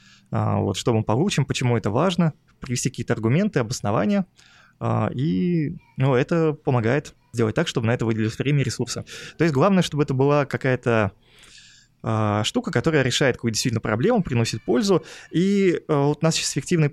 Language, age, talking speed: Russian, 20-39, 155 wpm